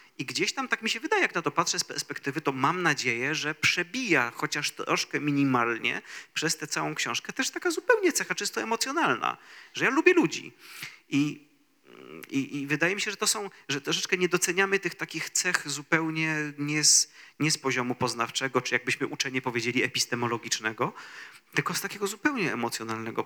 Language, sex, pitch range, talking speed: Polish, male, 125-180 Hz, 175 wpm